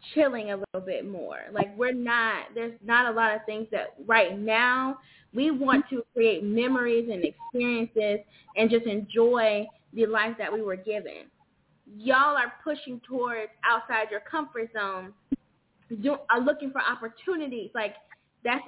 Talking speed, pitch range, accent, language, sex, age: 155 wpm, 210-255 Hz, American, English, female, 10-29